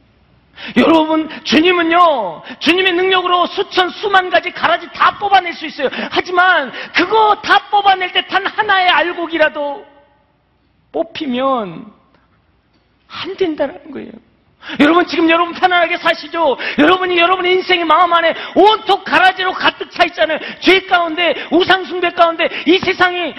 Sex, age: male, 40-59